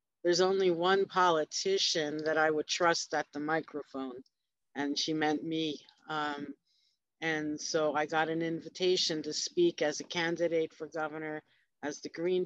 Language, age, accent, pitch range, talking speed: English, 50-69, American, 155-185 Hz, 155 wpm